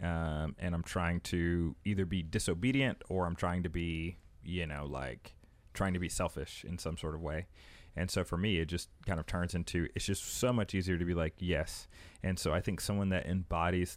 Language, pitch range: English, 80-95 Hz